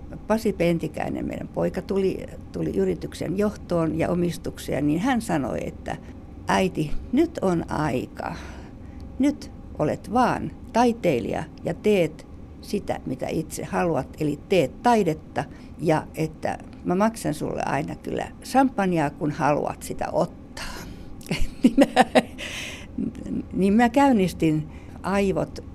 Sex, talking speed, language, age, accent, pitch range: female, 115 wpm, Finnish, 60-79, native, 120-195 Hz